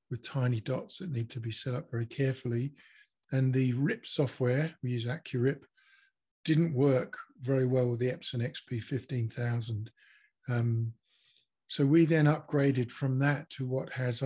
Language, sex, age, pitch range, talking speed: English, male, 50-69, 120-150 Hz, 145 wpm